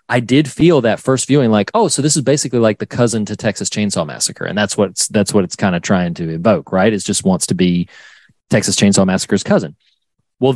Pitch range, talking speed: 100-125 Hz, 235 wpm